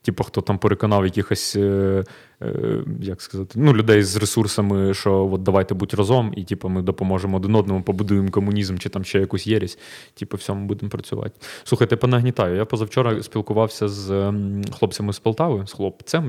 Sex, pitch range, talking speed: male, 100-115 Hz, 175 wpm